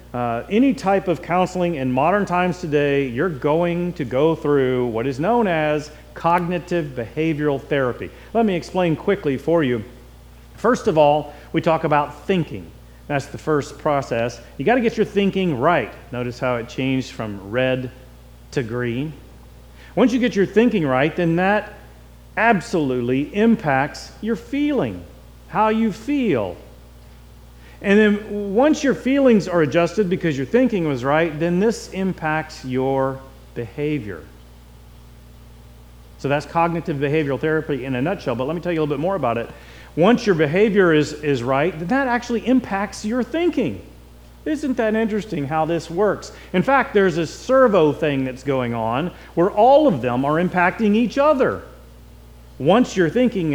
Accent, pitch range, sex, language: American, 125-195 Hz, male, English